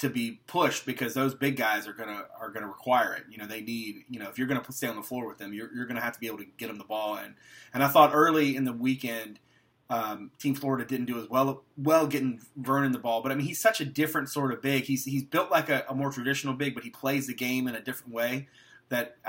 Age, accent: 30-49, American